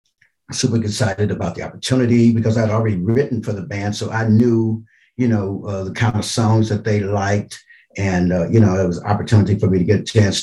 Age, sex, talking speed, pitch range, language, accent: 50-69, male, 230 wpm, 95-120 Hz, English, American